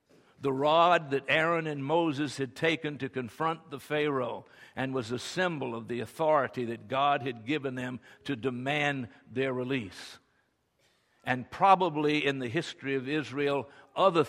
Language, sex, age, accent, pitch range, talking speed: English, male, 60-79, American, 125-165 Hz, 150 wpm